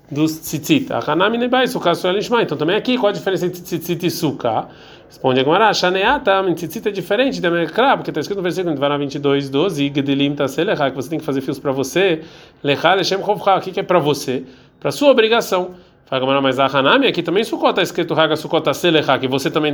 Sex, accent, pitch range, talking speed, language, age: male, Brazilian, 140-190 Hz, 250 wpm, Portuguese, 40-59